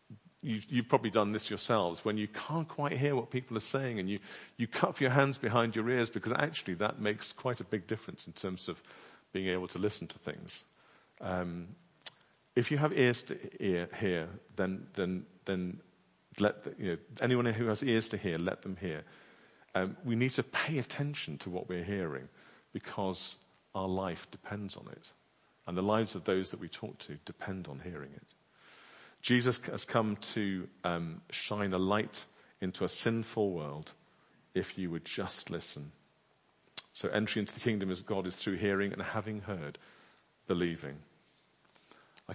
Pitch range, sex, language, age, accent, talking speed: 95-115 Hz, male, English, 50-69, British, 180 wpm